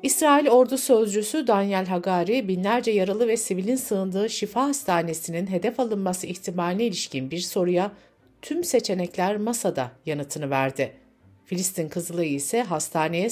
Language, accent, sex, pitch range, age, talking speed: Turkish, native, female, 170-240 Hz, 60-79, 120 wpm